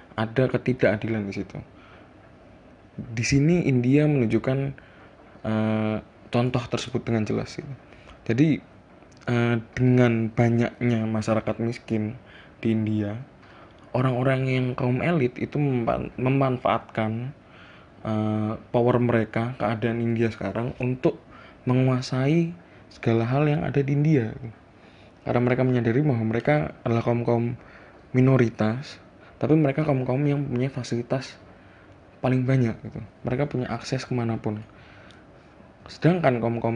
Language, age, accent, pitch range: Indonesian, 20-39, native, 110-130 Hz